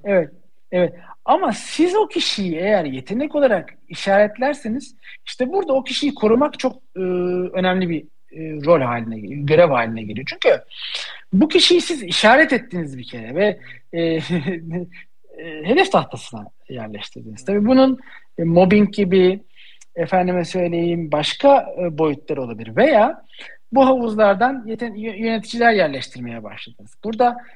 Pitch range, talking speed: 160-240 Hz, 120 wpm